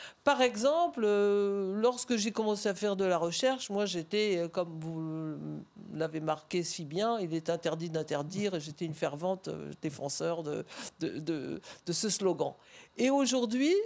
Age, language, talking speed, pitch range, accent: 50-69, French, 150 wpm, 185-255 Hz, French